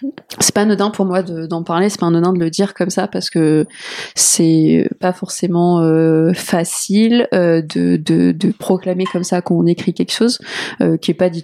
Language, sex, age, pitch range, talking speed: French, female, 20-39, 165-190 Hz, 195 wpm